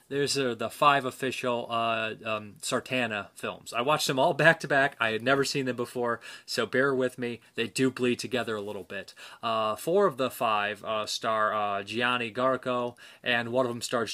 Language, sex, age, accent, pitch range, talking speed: English, male, 20-39, American, 115-145 Hz, 190 wpm